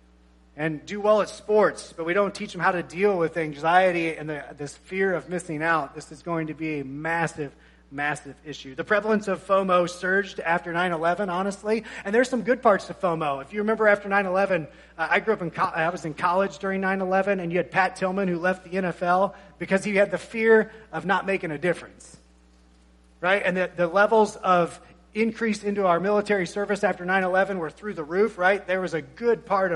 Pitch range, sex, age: 160-200 Hz, male, 30-49